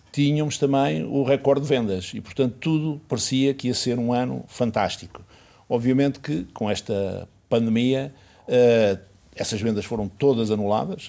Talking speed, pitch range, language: 145 wpm, 100-130 Hz, Portuguese